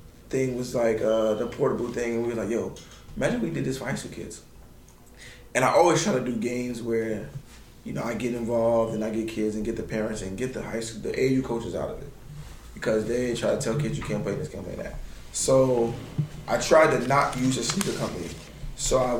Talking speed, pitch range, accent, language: 240 wpm, 110-130 Hz, American, English